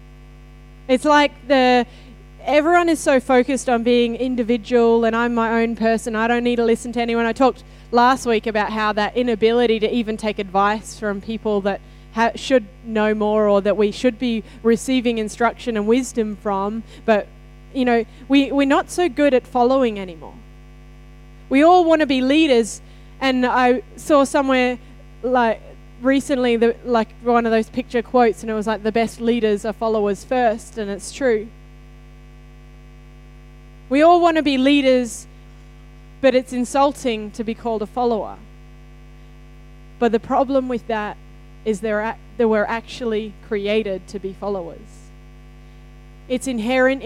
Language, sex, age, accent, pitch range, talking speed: English, female, 10-29, Australian, 220-255 Hz, 155 wpm